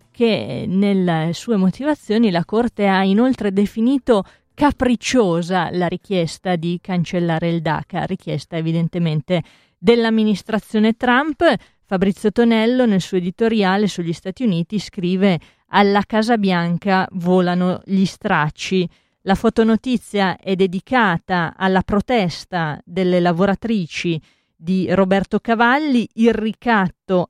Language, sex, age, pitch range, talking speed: Italian, female, 30-49, 175-220 Hz, 105 wpm